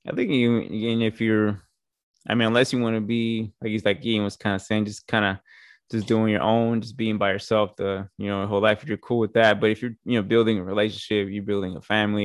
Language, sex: English, male